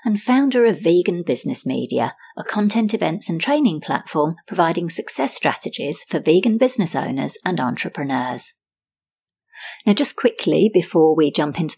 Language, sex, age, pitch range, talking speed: English, female, 40-59, 155-215 Hz, 145 wpm